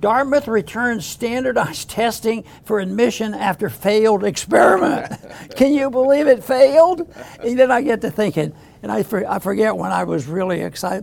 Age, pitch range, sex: 60-79, 205-245 Hz, male